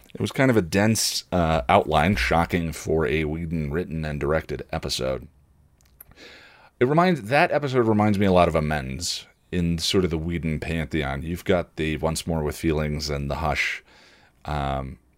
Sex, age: male, 30-49